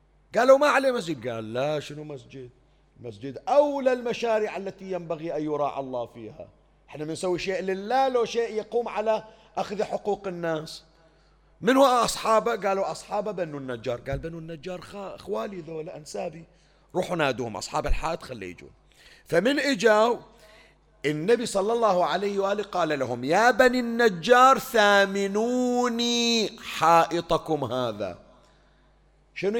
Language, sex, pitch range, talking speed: Arabic, male, 150-220 Hz, 130 wpm